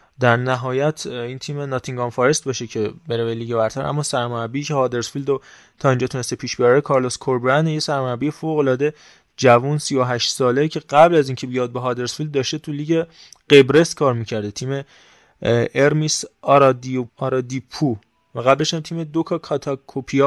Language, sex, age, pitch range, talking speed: Persian, male, 20-39, 125-150 Hz, 150 wpm